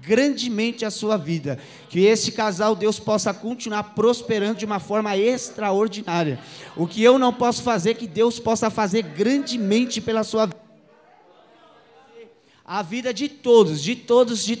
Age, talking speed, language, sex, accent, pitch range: 20-39, 150 wpm, Portuguese, male, Brazilian, 215-250 Hz